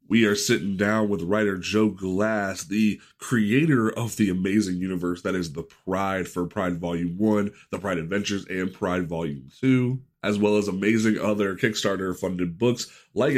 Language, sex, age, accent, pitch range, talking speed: English, male, 30-49, American, 90-110 Hz, 165 wpm